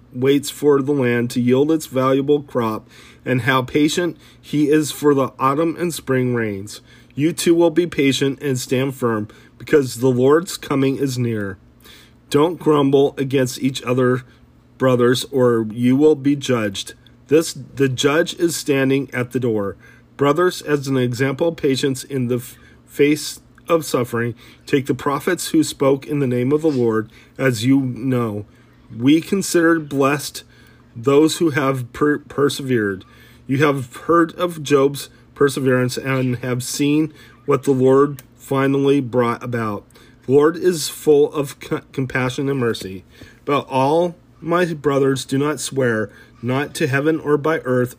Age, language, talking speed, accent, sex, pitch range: 40-59, English, 155 wpm, American, male, 125-145 Hz